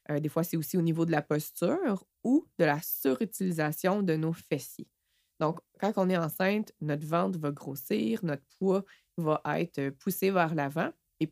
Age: 20-39